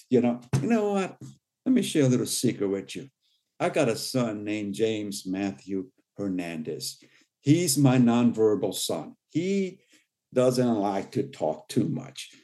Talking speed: 155 wpm